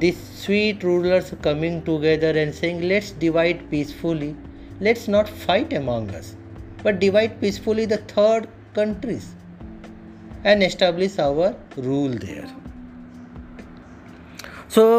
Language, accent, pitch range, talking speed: Hindi, native, 130-200 Hz, 110 wpm